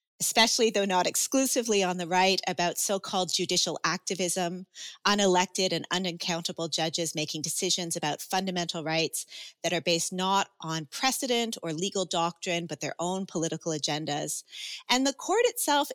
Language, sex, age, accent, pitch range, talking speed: English, female, 30-49, American, 170-235 Hz, 145 wpm